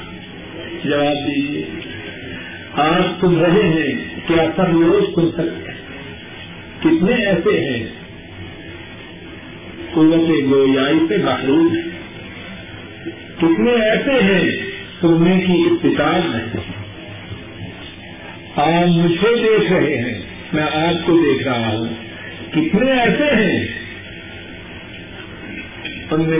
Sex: male